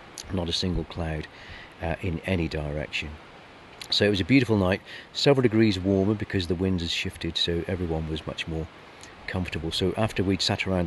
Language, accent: English, British